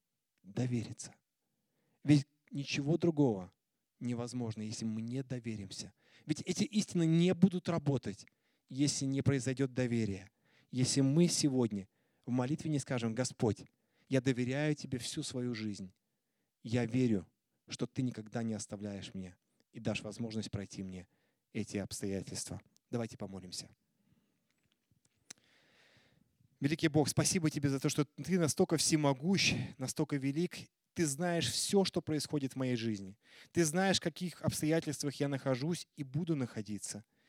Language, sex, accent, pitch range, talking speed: Russian, male, native, 110-145 Hz, 130 wpm